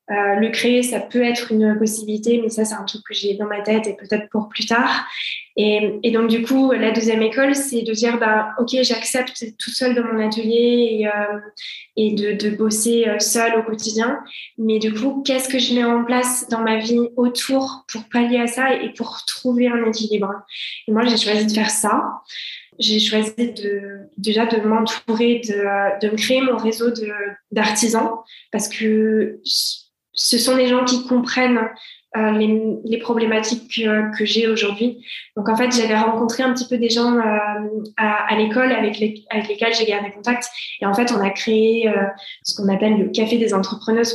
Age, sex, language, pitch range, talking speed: 20-39, female, French, 215-235 Hz, 200 wpm